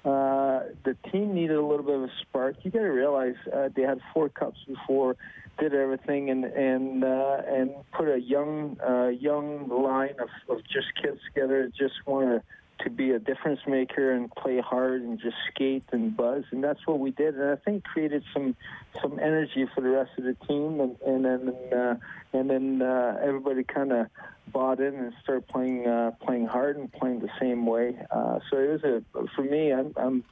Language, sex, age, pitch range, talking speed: English, male, 40-59, 125-135 Hz, 205 wpm